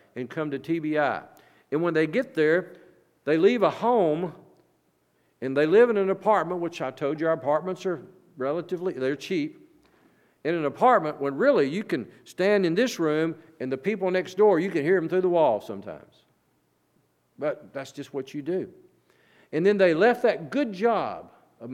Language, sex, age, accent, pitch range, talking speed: English, male, 50-69, American, 140-205 Hz, 185 wpm